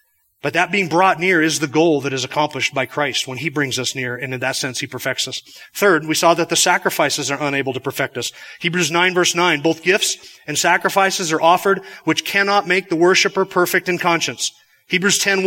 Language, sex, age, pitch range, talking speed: English, male, 30-49, 165-200 Hz, 215 wpm